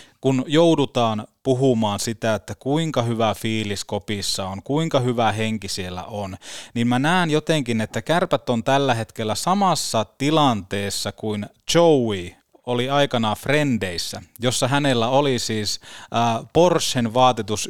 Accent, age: native, 20-39